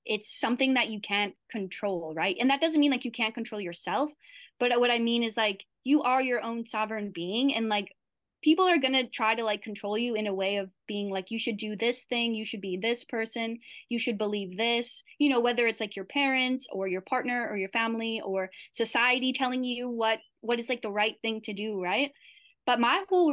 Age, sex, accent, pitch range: 20-39, female, American, 205-260 Hz